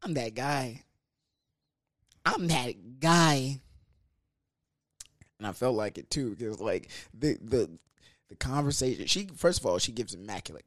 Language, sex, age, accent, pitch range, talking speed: English, male, 20-39, American, 110-150 Hz, 140 wpm